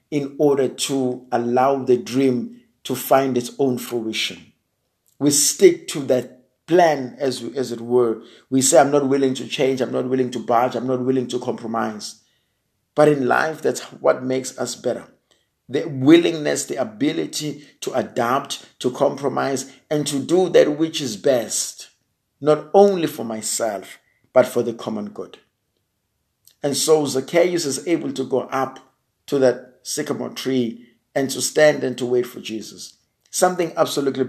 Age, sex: 50-69, male